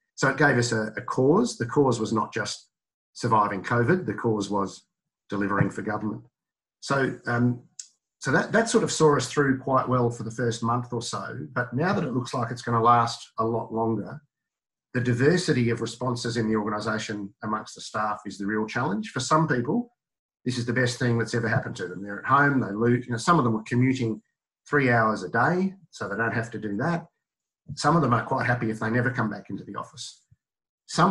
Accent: Australian